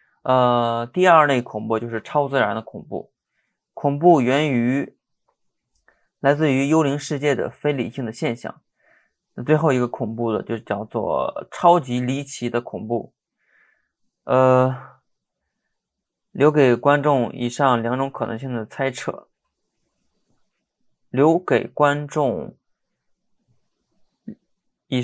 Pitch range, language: 120-145 Hz, Chinese